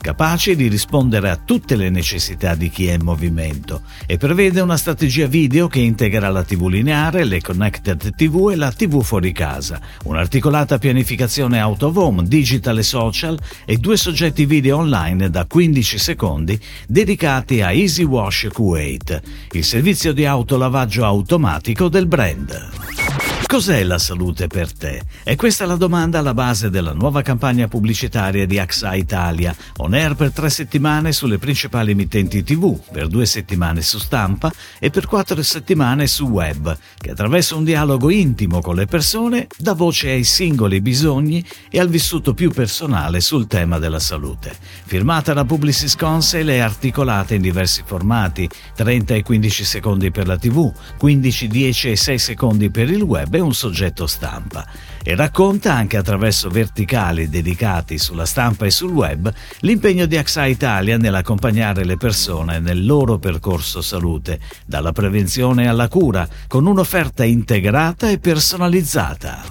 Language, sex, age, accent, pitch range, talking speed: Italian, male, 50-69, native, 95-150 Hz, 155 wpm